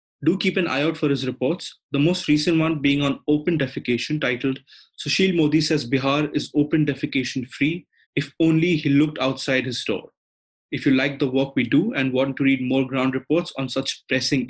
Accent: Indian